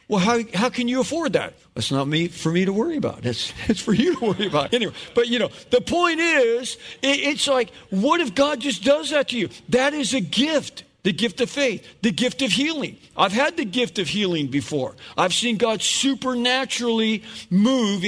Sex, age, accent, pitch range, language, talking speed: male, 50-69, American, 190-265 Hz, English, 210 wpm